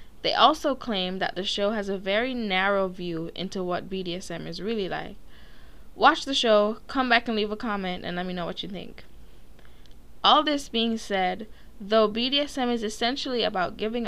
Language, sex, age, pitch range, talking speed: English, female, 10-29, 180-230 Hz, 185 wpm